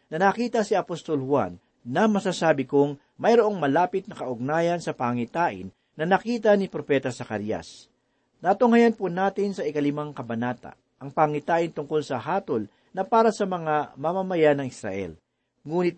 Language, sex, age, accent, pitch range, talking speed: Filipino, male, 40-59, native, 135-185 Hz, 145 wpm